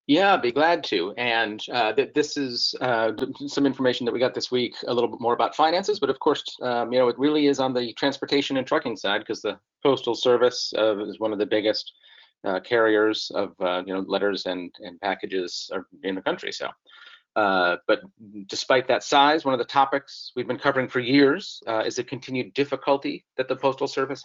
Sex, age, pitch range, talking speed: male, 40-59, 110-140 Hz, 215 wpm